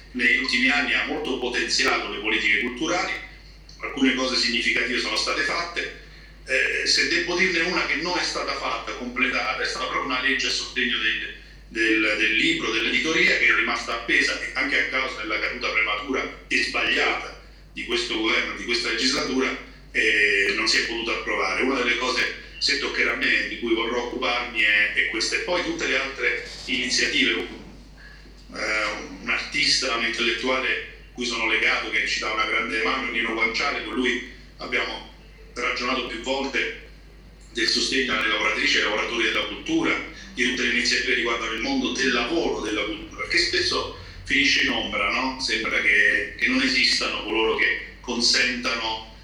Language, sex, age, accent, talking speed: Italian, male, 50-69, native, 170 wpm